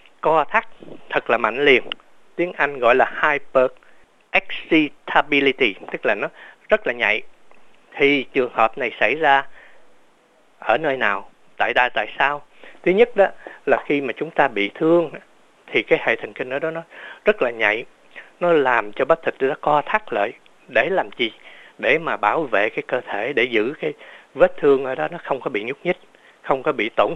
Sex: male